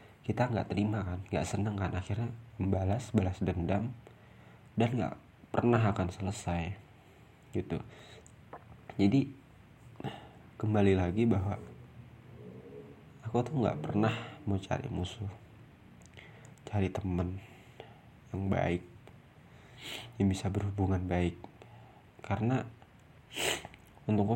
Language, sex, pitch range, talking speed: Indonesian, male, 95-115 Hz, 95 wpm